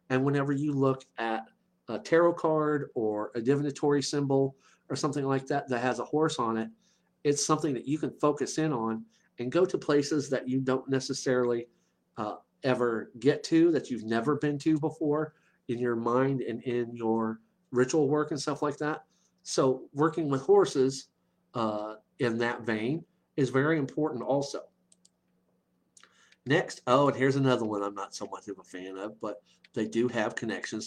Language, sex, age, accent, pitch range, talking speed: English, male, 50-69, American, 120-150 Hz, 175 wpm